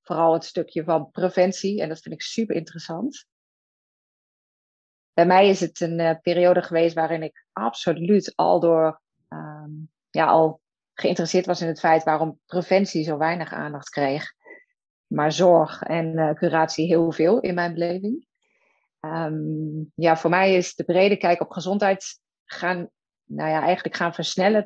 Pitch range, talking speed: 160-190 Hz, 155 wpm